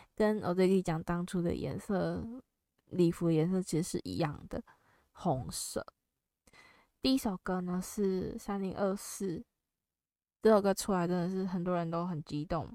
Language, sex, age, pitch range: Chinese, female, 10-29, 165-195 Hz